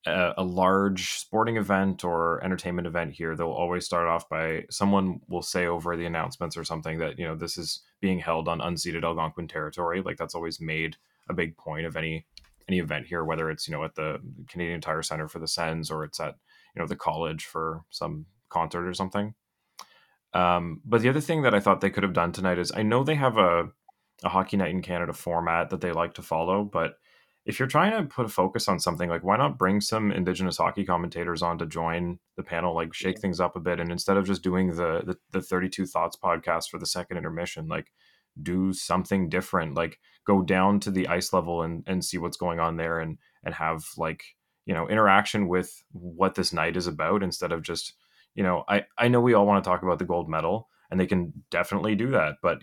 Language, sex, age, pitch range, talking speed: English, male, 20-39, 85-95 Hz, 225 wpm